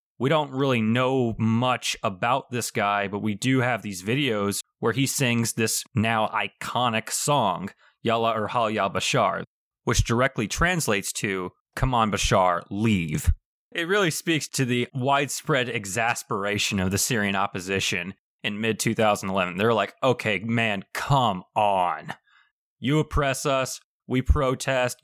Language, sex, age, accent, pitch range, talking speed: English, male, 20-39, American, 100-125 Hz, 135 wpm